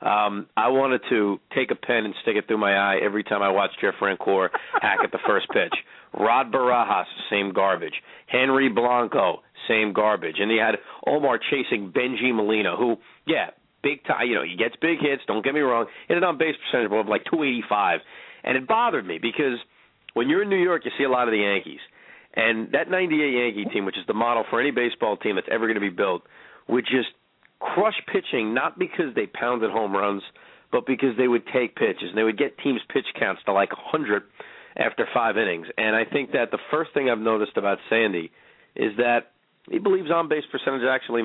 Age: 40-59